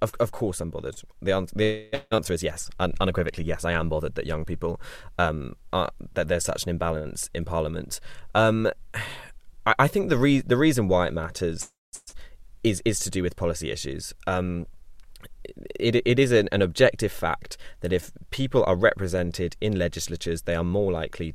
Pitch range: 85-105 Hz